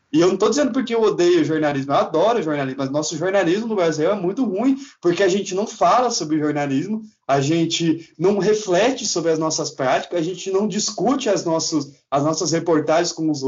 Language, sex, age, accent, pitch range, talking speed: Portuguese, male, 20-39, Brazilian, 165-220 Hz, 205 wpm